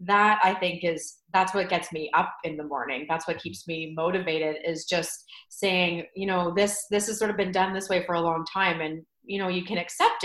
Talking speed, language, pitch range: 240 wpm, English, 165-215 Hz